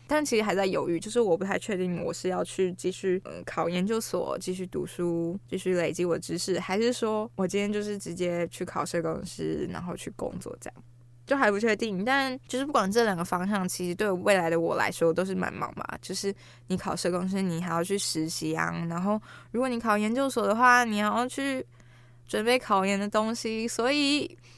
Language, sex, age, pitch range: Chinese, female, 20-39, 180-240 Hz